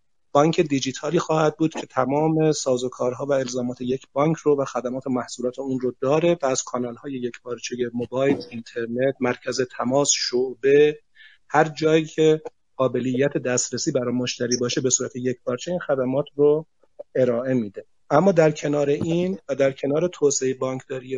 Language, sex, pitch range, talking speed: Persian, male, 125-155 Hz, 160 wpm